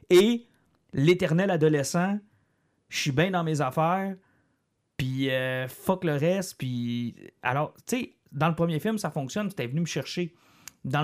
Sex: male